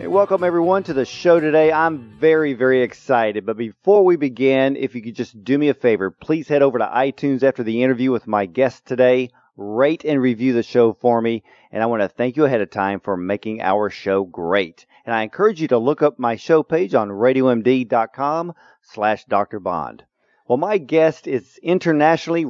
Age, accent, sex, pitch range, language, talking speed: 40-59, American, male, 120-160 Hz, English, 200 wpm